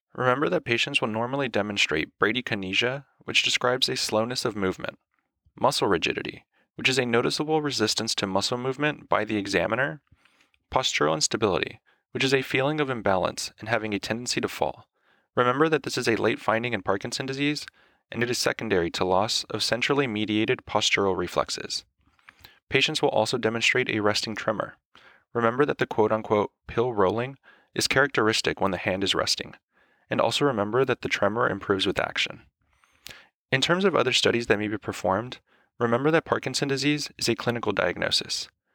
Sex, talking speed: male, 165 wpm